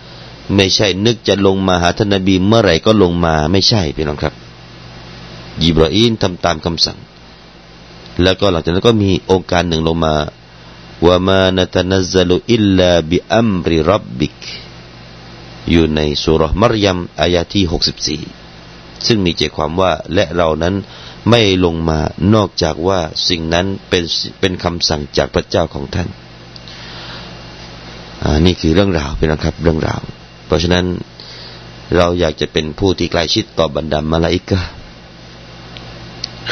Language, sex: Thai, male